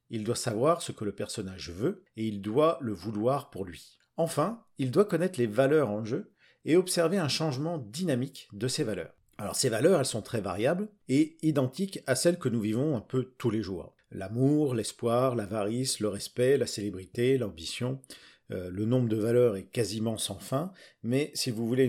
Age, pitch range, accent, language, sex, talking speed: 50-69, 105-145 Hz, French, French, male, 190 wpm